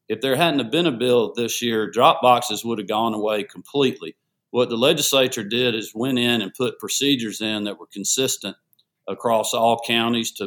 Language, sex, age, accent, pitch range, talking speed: English, male, 50-69, American, 105-125 Hz, 195 wpm